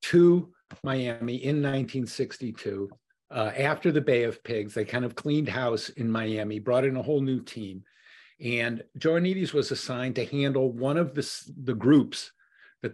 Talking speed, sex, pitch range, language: 160 wpm, male, 115-140 Hz, English